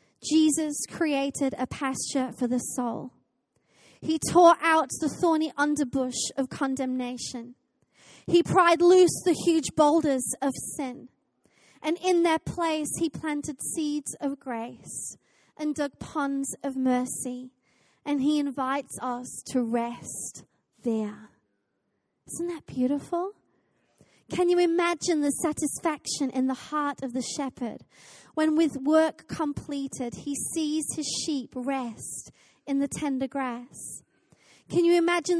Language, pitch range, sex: English, 255-310 Hz, female